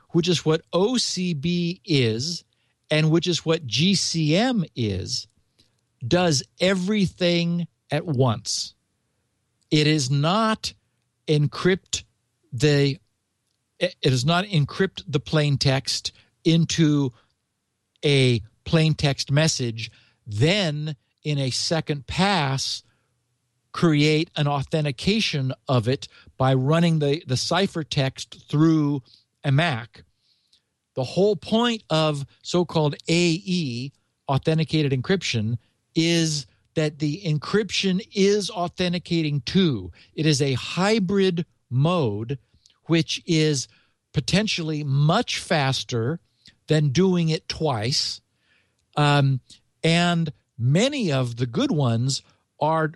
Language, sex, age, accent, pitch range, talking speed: English, male, 50-69, American, 125-170 Hz, 100 wpm